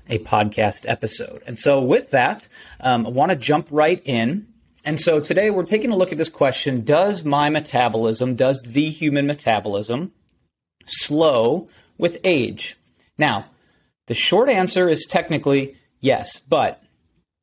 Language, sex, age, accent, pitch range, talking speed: English, male, 30-49, American, 120-165 Hz, 145 wpm